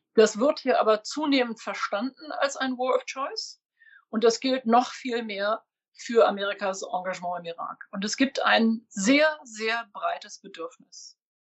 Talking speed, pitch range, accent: 155 wpm, 205-255 Hz, German